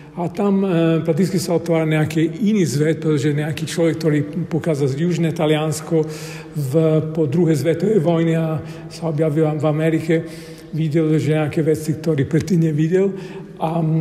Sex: male